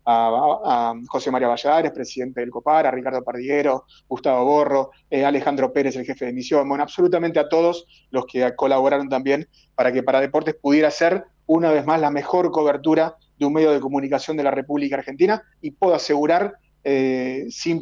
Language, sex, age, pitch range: Italian, male, 30-49, 140-170 Hz